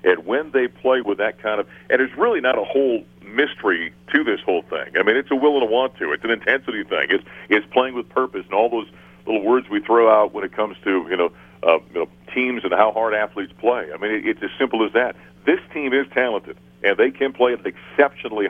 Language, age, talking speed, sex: English, 50-69, 255 wpm, male